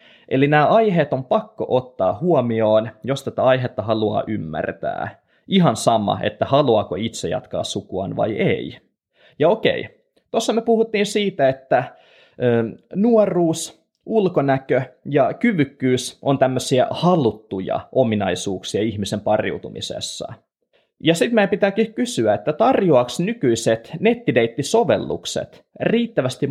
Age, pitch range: 20-39, 125-195 Hz